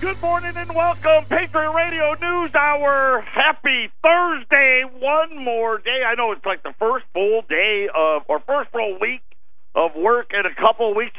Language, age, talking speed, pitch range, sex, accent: English, 50-69, 175 wpm, 145-235 Hz, male, American